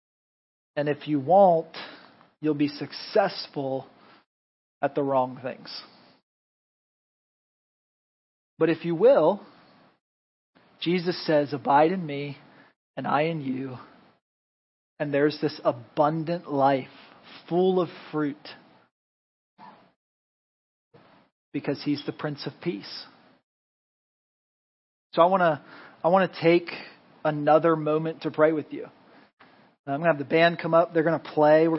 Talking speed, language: 120 wpm, English